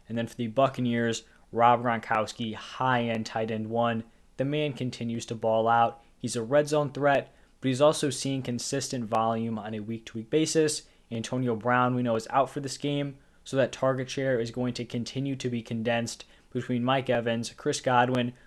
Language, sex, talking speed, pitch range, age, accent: English, male, 190 wpm, 115-135 Hz, 20-39, American